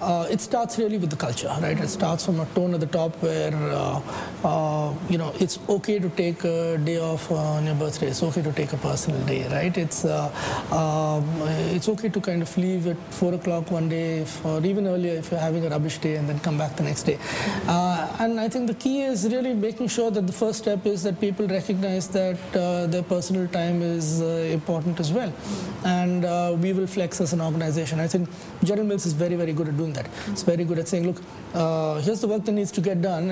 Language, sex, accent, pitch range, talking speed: English, male, Indian, 160-195 Hz, 240 wpm